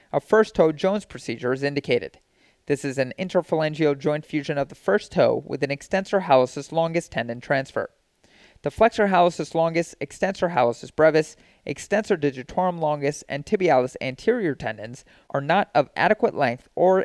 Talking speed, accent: 155 wpm, American